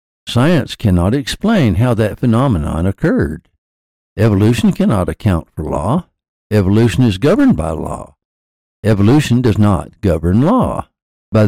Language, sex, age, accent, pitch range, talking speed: English, male, 60-79, American, 90-120 Hz, 120 wpm